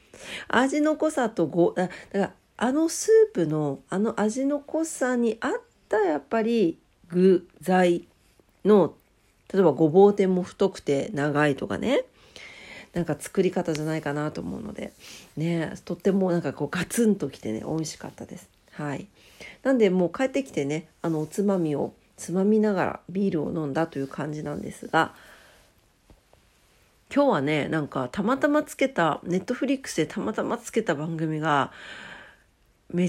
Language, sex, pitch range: Japanese, female, 155-230 Hz